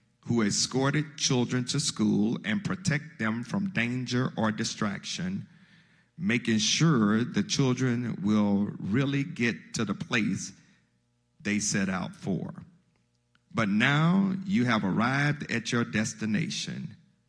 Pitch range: 110-175 Hz